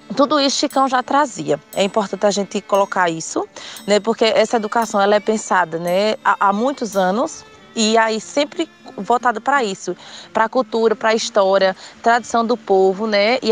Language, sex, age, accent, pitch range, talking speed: Portuguese, female, 20-39, Brazilian, 200-255 Hz, 175 wpm